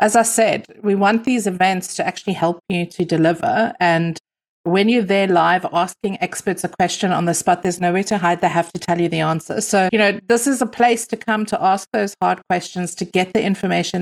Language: English